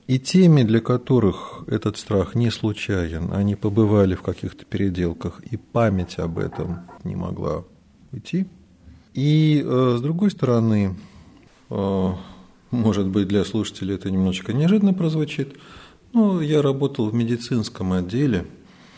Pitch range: 95-150 Hz